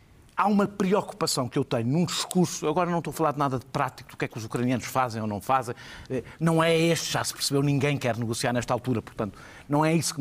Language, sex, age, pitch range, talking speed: Portuguese, male, 50-69, 130-175 Hz, 255 wpm